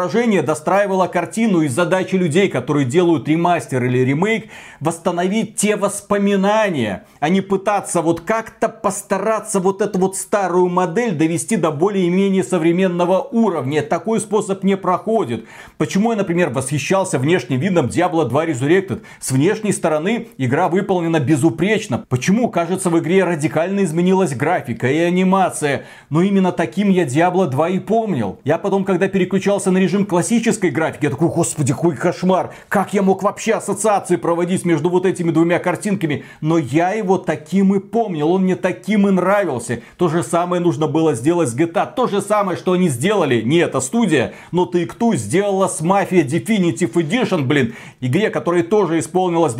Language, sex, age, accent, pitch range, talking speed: Russian, male, 40-59, native, 165-200 Hz, 160 wpm